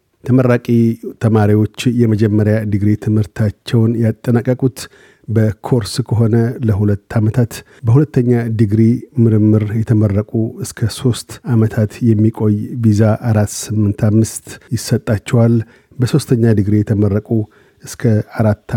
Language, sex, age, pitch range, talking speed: Amharic, male, 50-69, 105-120 Hz, 90 wpm